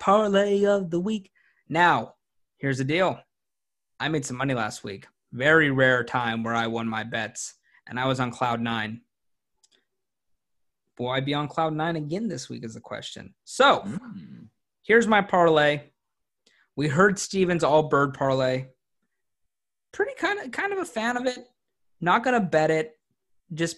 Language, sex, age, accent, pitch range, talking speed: English, male, 20-39, American, 125-175 Hz, 160 wpm